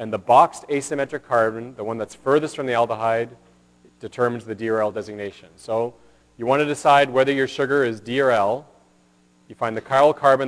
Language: English